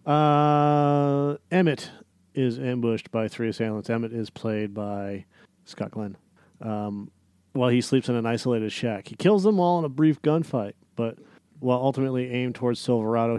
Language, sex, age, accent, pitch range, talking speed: English, male, 40-59, American, 110-125 Hz, 160 wpm